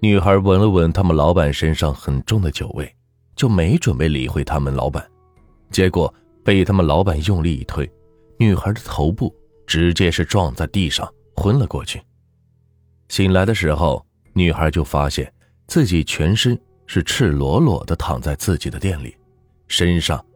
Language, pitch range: Chinese, 75-105 Hz